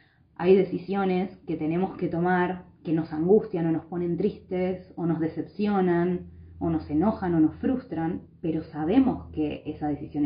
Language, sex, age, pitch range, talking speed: Spanish, female, 20-39, 155-185 Hz, 160 wpm